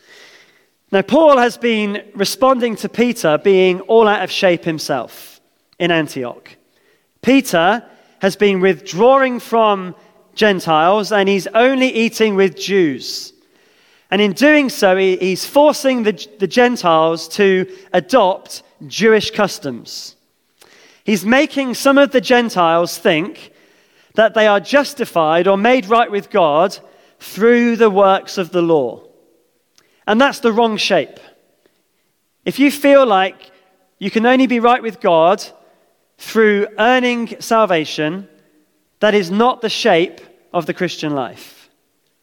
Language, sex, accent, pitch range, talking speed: English, male, British, 190-250 Hz, 125 wpm